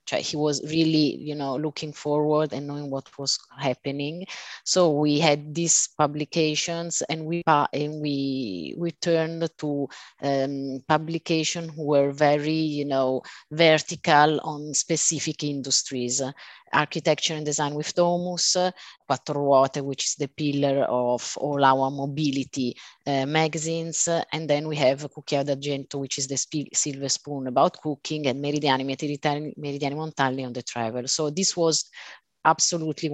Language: English